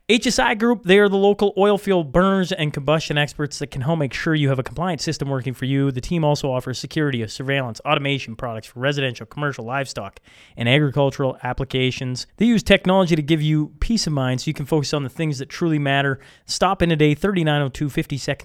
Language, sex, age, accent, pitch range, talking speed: English, male, 20-39, American, 130-160 Hz, 205 wpm